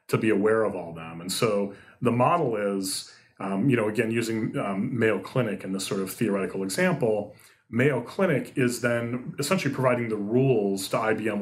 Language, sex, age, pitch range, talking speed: English, male, 30-49, 100-130 Hz, 185 wpm